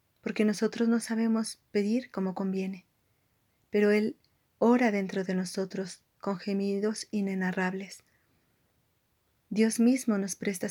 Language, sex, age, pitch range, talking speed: Spanish, female, 30-49, 185-215 Hz, 110 wpm